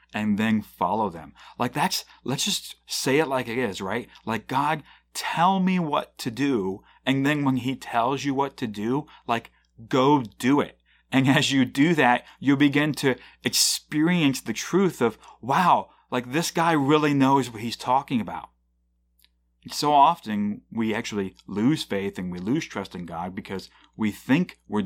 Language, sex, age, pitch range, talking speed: English, male, 30-49, 85-130 Hz, 175 wpm